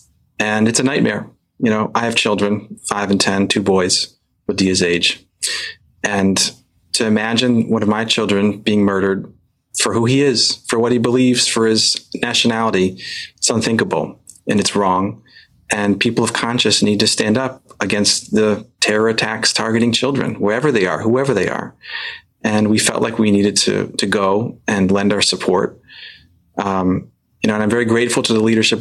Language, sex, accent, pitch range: English, male, American, 100-115 Hz